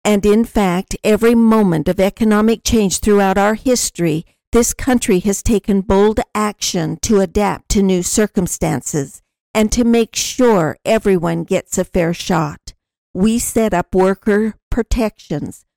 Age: 60-79